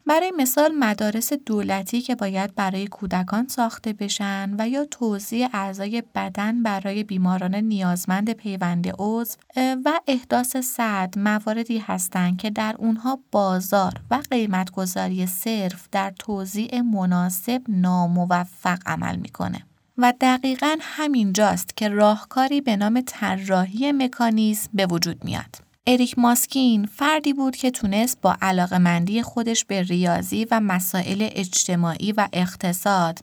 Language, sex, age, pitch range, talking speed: Persian, female, 30-49, 185-240 Hz, 125 wpm